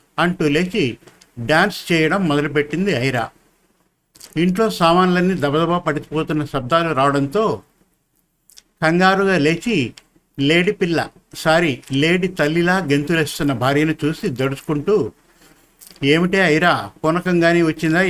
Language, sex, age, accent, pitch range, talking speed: Telugu, male, 50-69, native, 150-180 Hz, 90 wpm